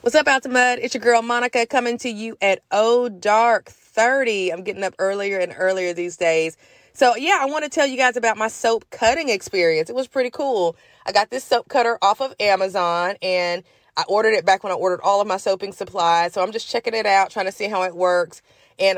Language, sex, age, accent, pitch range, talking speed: English, female, 30-49, American, 185-235 Hz, 235 wpm